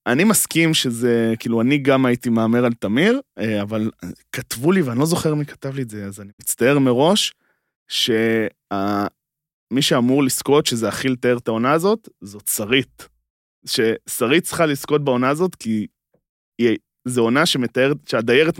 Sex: male